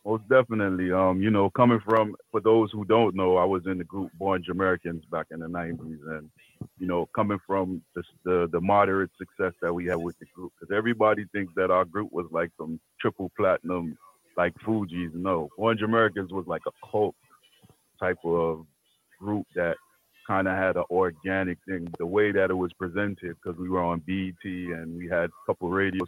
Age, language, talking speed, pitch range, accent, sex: 30-49, English, 200 wpm, 85-110 Hz, American, male